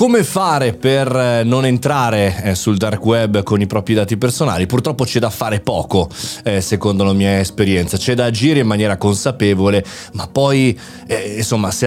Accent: native